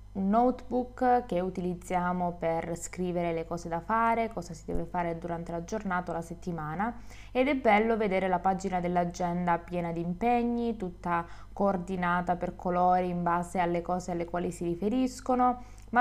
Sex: female